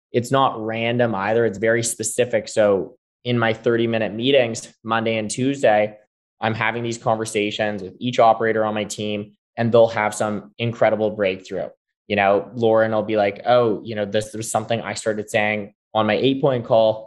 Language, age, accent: English, 20-39, American